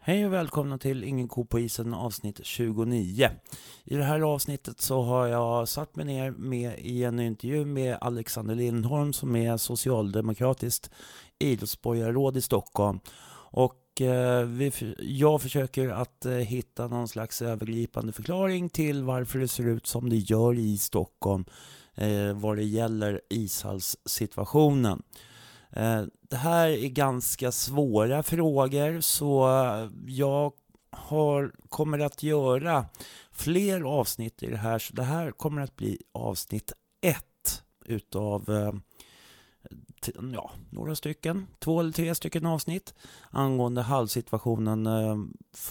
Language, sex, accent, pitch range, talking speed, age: Swedish, male, native, 110-140 Hz, 120 wpm, 30-49